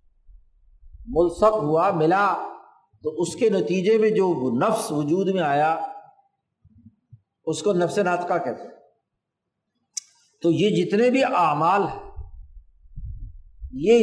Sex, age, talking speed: male, 50-69, 105 wpm